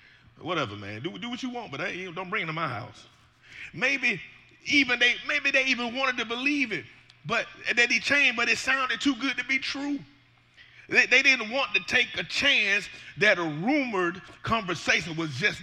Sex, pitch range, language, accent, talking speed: male, 150-220 Hz, English, American, 195 wpm